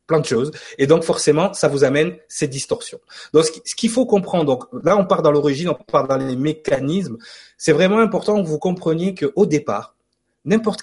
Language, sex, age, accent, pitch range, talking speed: French, male, 30-49, French, 135-190 Hz, 200 wpm